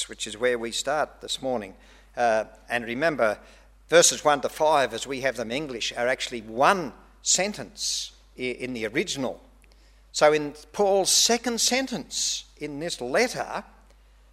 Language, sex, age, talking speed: English, male, 50-69, 145 wpm